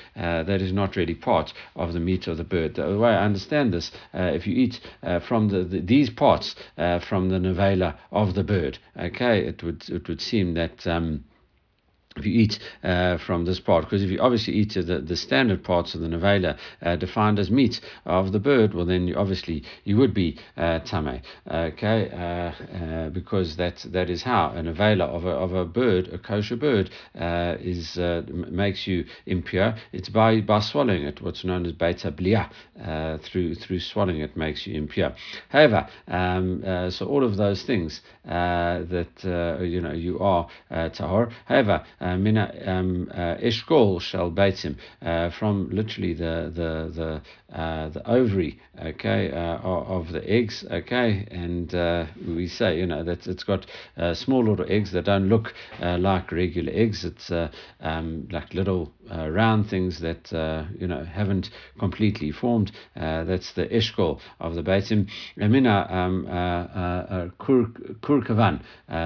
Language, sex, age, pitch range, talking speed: English, male, 50-69, 85-100 Hz, 175 wpm